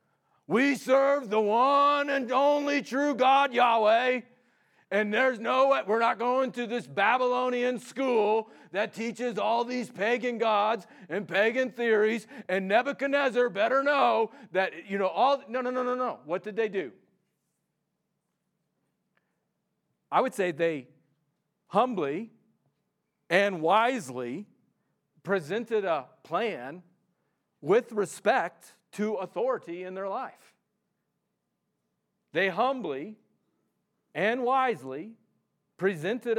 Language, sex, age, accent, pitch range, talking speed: English, male, 40-59, American, 185-240 Hz, 110 wpm